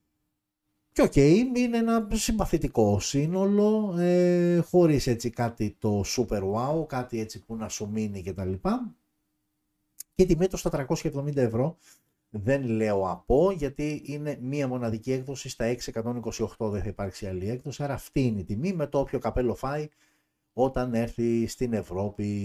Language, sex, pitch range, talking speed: Greek, male, 110-165 Hz, 145 wpm